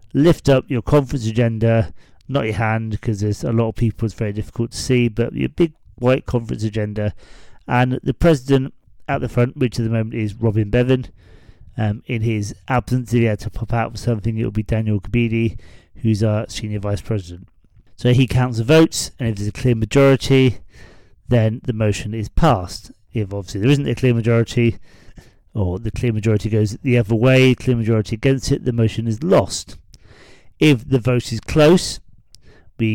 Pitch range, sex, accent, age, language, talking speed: 105-125 Hz, male, British, 30-49, English, 190 wpm